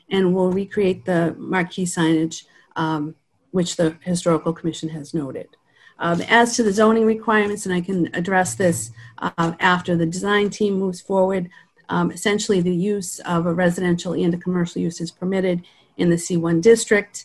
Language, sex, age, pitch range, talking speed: English, female, 50-69, 165-185 Hz, 165 wpm